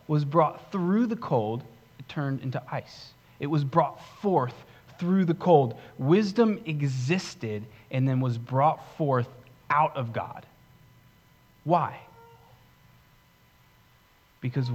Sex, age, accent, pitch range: male, 30-49, American, 125-175 Hz